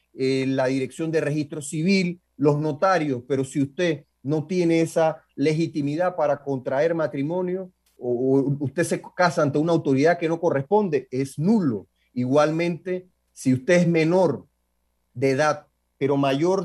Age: 30-49